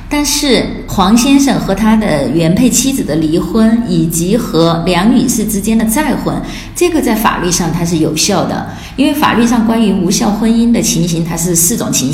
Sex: female